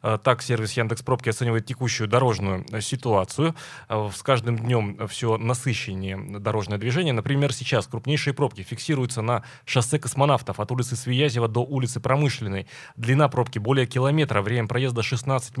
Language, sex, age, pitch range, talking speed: Russian, male, 20-39, 110-135 Hz, 135 wpm